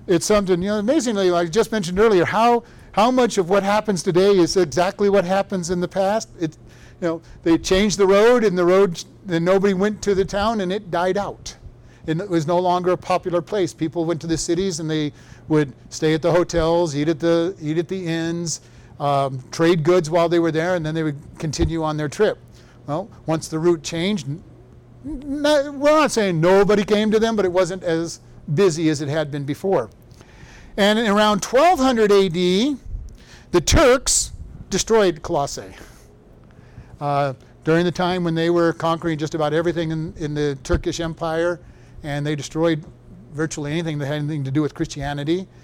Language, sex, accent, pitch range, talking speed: English, male, American, 155-200 Hz, 190 wpm